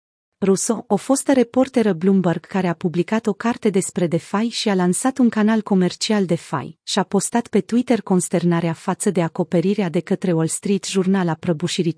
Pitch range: 175-220 Hz